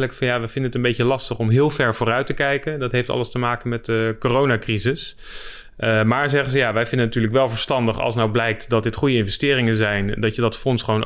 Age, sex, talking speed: 30-49, male, 250 wpm